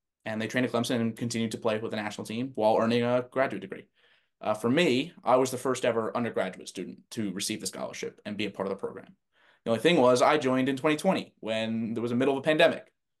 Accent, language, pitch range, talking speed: American, English, 105-120 Hz, 250 wpm